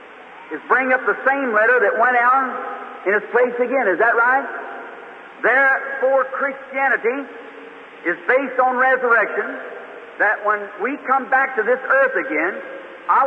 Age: 50-69